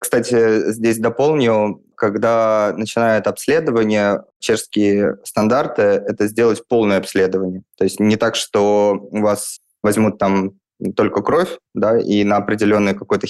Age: 20-39